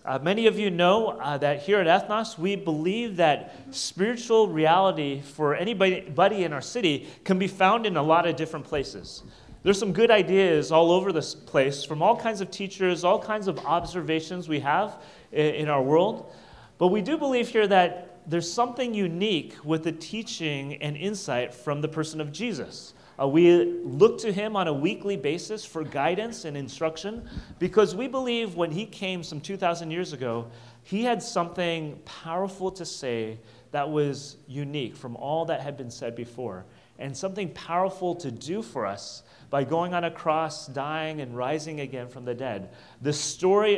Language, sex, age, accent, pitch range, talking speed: English, male, 30-49, American, 145-195 Hz, 180 wpm